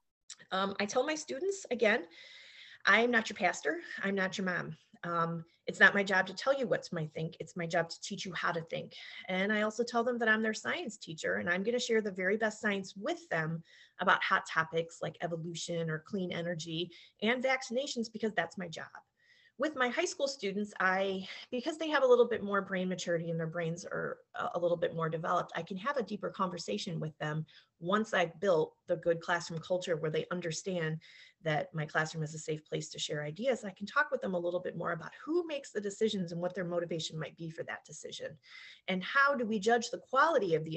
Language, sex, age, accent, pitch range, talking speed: English, female, 30-49, American, 165-230 Hz, 225 wpm